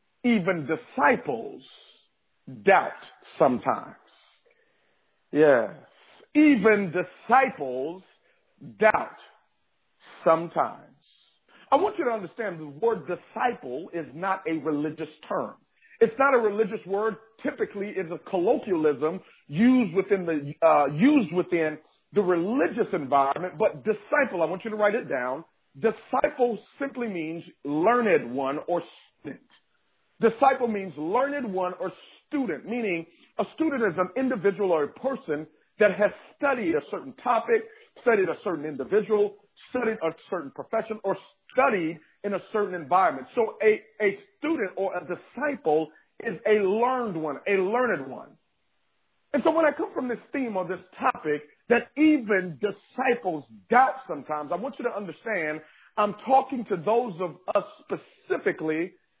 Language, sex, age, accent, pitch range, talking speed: English, male, 50-69, American, 170-250 Hz, 135 wpm